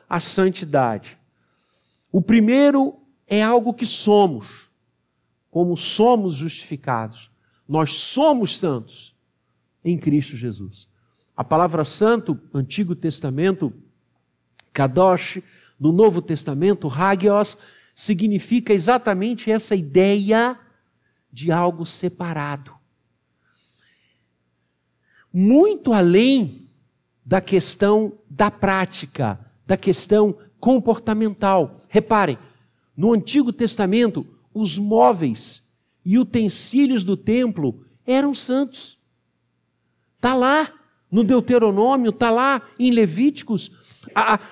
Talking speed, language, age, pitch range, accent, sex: 85 wpm, Portuguese, 50-69, 140-225 Hz, Brazilian, male